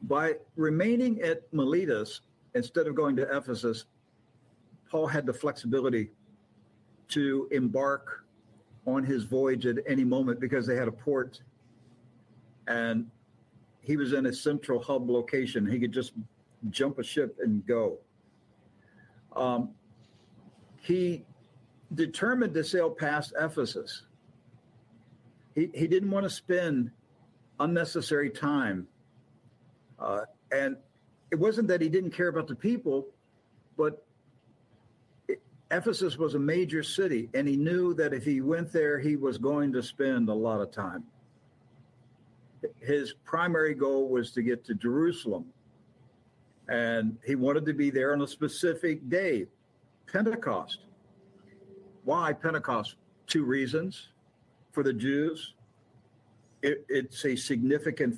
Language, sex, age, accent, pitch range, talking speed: English, male, 60-79, American, 120-160 Hz, 125 wpm